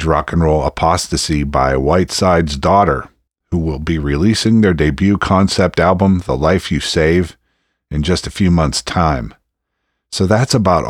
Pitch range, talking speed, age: 80-100 Hz, 155 wpm, 50-69